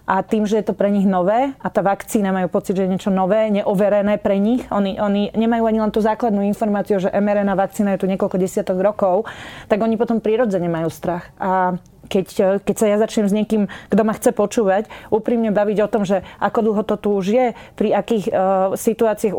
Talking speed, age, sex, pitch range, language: 210 wpm, 30-49, female, 195-220 Hz, Slovak